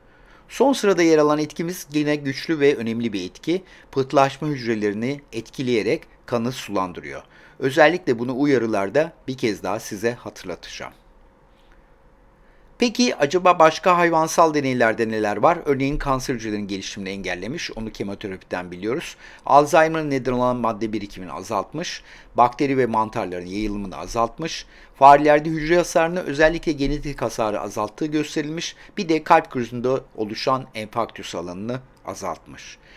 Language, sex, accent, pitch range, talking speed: Turkish, male, native, 110-155 Hz, 120 wpm